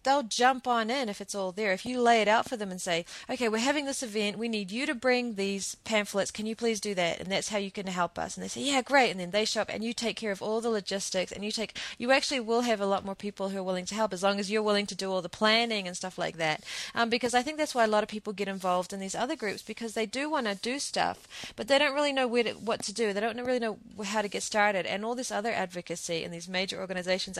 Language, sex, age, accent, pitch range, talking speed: English, female, 30-49, Australian, 185-230 Hz, 305 wpm